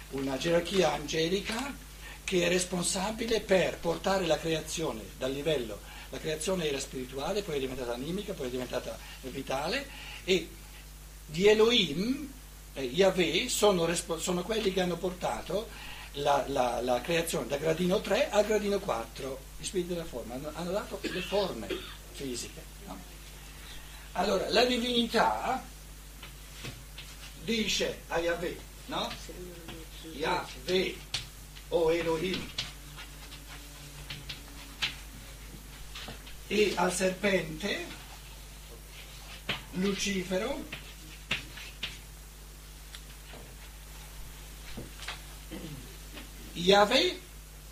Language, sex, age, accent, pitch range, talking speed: Italian, male, 60-79, native, 140-200 Hz, 90 wpm